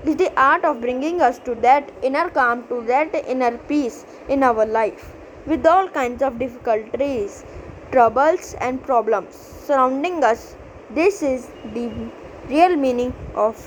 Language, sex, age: English, female, 20-39